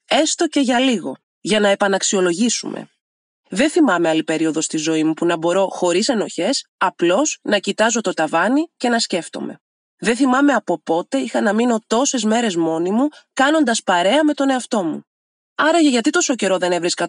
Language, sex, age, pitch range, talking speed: Greek, female, 20-39, 190-275 Hz, 175 wpm